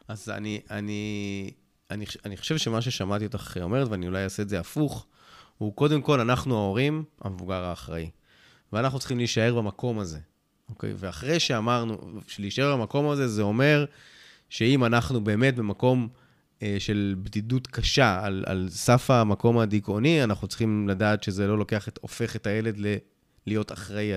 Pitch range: 100-125 Hz